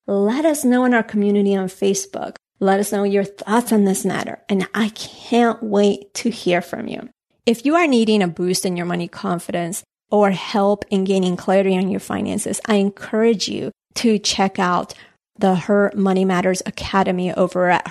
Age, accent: 30-49, American